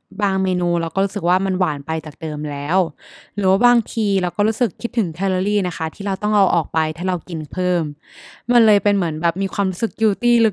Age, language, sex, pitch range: 20-39, Thai, female, 175-225 Hz